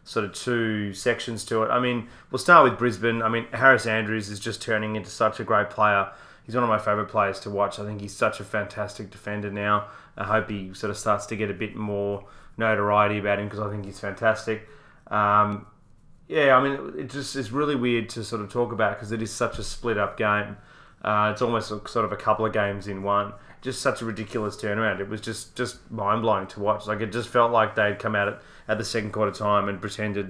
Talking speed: 240 wpm